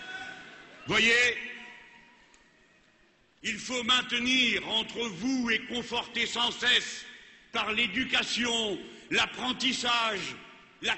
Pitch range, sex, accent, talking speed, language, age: 235-260 Hz, male, French, 75 wpm, French, 60-79